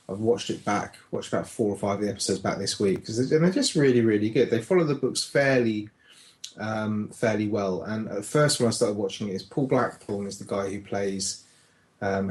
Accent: British